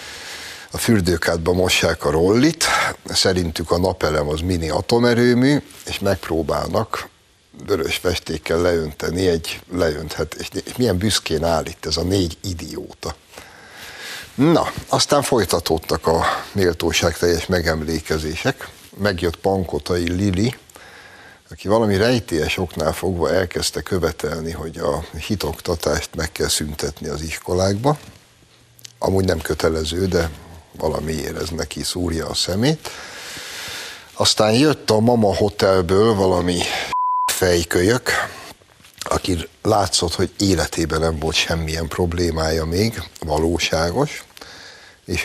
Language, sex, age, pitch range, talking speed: Hungarian, male, 60-79, 80-100 Hz, 105 wpm